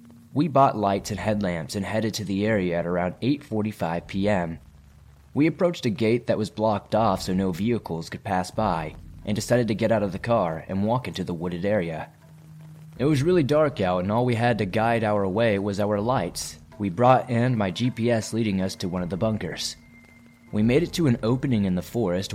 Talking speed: 210 wpm